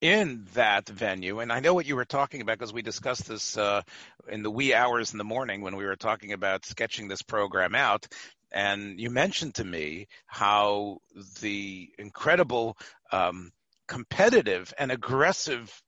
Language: English